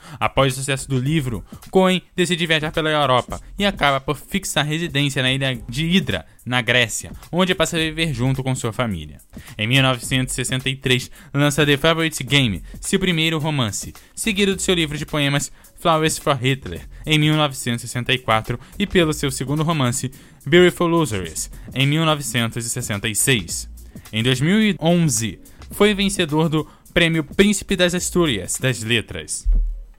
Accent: Brazilian